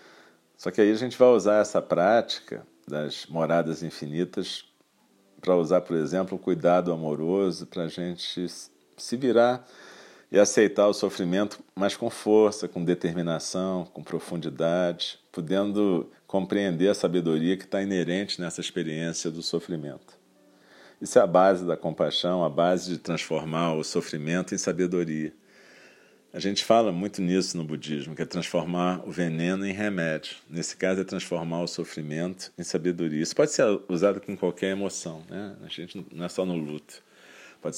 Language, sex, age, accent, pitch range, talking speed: Portuguese, male, 40-59, Brazilian, 85-95 Hz, 155 wpm